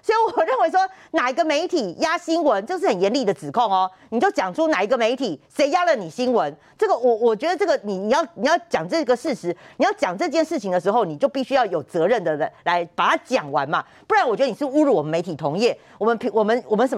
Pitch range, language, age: 195-330 Hz, Chinese, 40-59